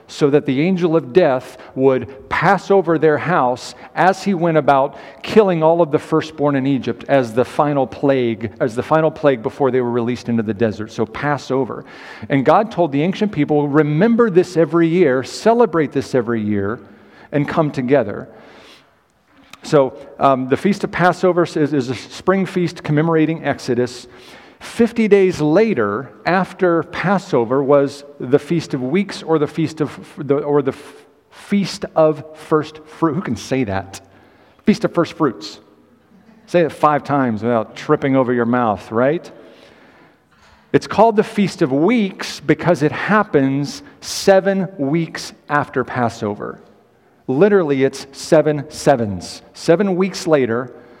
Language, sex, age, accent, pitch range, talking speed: English, male, 50-69, American, 130-170 Hz, 150 wpm